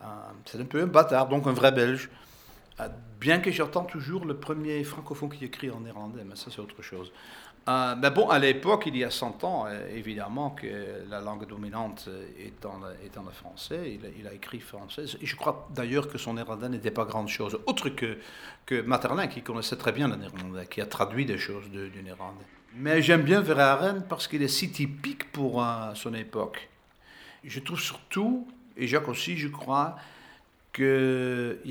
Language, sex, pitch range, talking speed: French, male, 115-155 Hz, 185 wpm